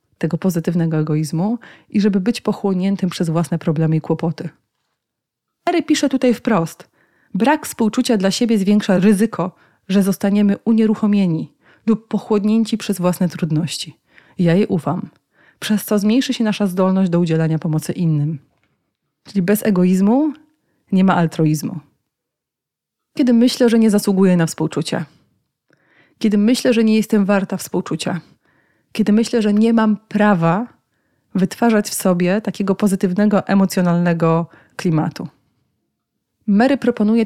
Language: Polish